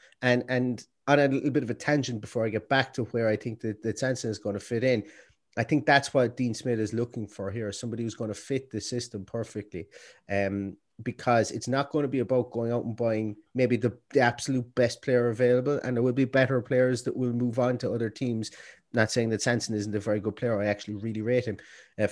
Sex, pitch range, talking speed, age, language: male, 110-130 Hz, 245 wpm, 30-49, English